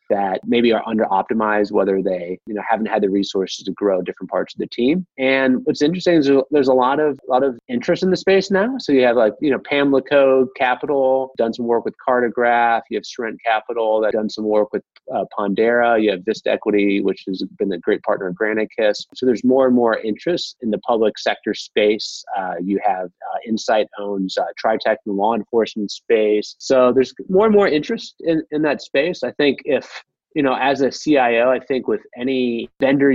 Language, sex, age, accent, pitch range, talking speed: English, male, 30-49, American, 100-130 Hz, 210 wpm